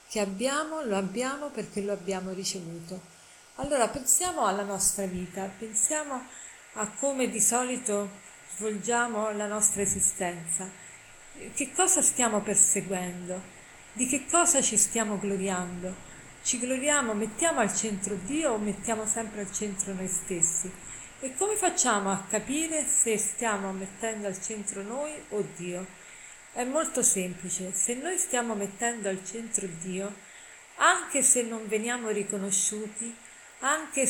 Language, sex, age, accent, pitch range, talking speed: Italian, female, 40-59, native, 200-245 Hz, 130 wpm